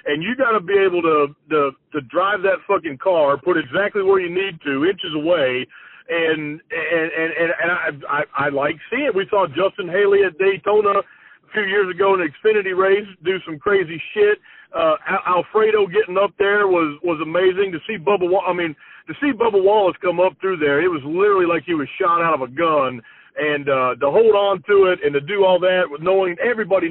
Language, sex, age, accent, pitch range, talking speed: English, male, 50-69, American, 165-210 Hz, 215 wpm